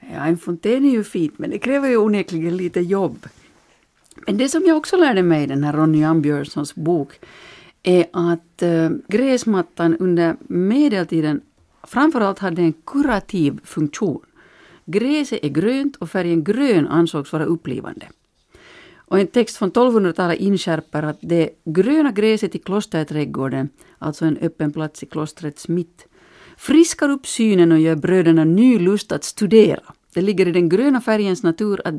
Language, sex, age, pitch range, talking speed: Finnish, female, 50-69, 160-215 Hz, 150 wpm